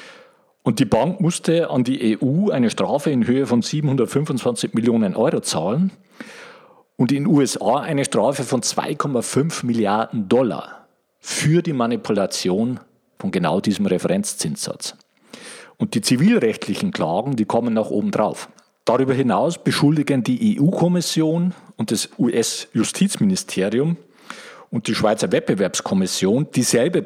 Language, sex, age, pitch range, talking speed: German, male, 50-69, 120-180 Hz, 120 wpm